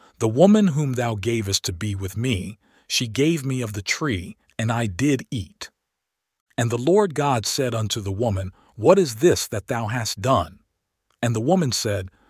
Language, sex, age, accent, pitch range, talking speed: English, male, 50-69, American, 105-145 Hz, 185 wpm